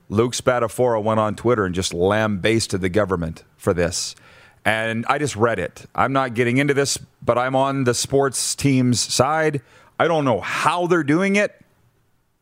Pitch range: 120-160 Hz